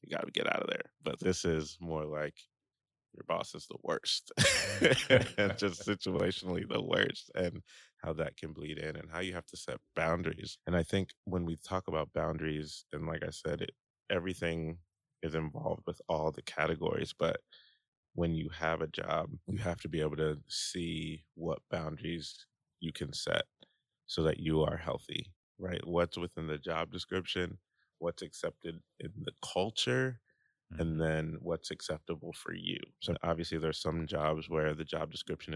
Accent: American